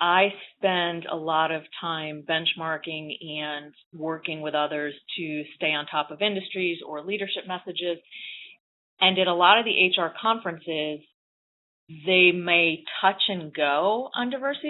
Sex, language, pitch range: female, English, 155-185 Hz